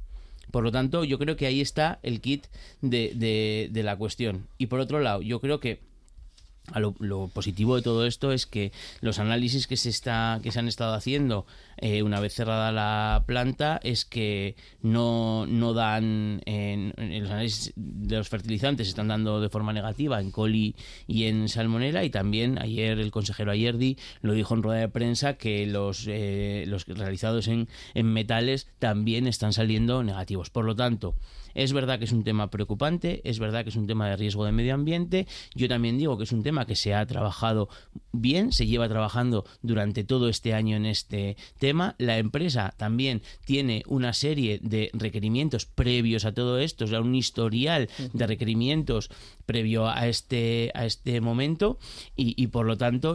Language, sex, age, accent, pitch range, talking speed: Spanish, male, 30-49, Spanish, 105-125 Hz, 185 wpm